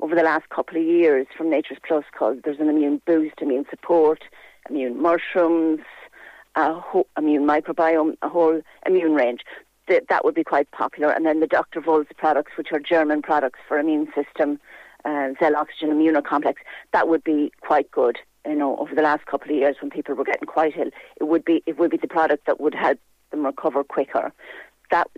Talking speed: 185 wpm